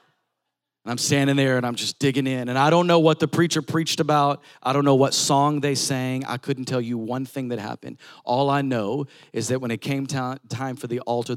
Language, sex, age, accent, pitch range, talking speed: English, male, 40-59, American, 125-150 Hz, 240 wpm